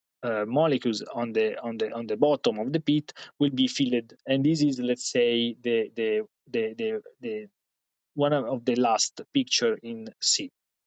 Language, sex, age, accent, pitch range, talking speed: English, male, 20-39, Italian, 120-150 Hz, 175 wpm